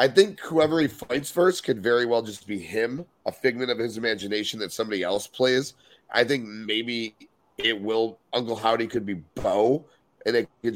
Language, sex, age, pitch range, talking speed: English, male, 30-49, 110-130 Hz, 190 wpm